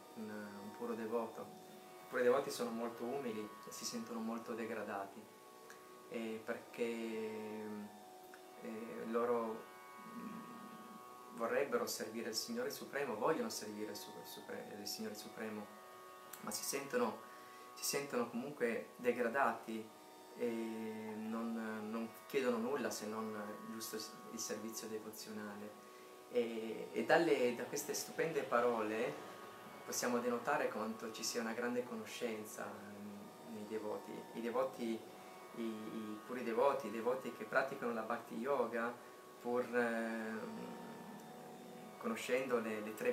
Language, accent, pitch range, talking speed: Italian, native, 100-120 Hz, 120 wpm